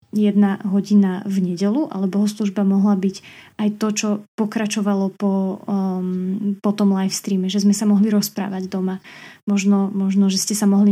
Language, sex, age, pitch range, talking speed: Slovak, female, 20-39, 200-215 Hz, 165 wpm